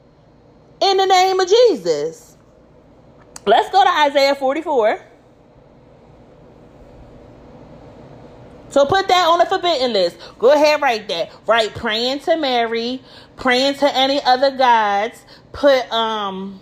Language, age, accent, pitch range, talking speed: English, 30-49, American, 225-335 Hz, 115 wpm